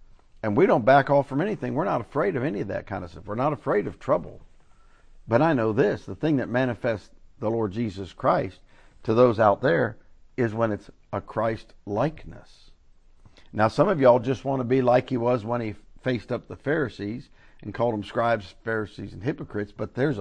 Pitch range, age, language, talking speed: 100-135 Hz, 50-69, English, 205 wpm